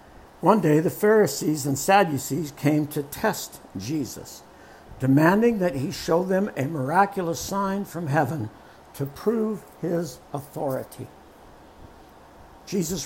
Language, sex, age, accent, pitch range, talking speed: English, male, 60-79, American, 145-185 Hz, 115 wpm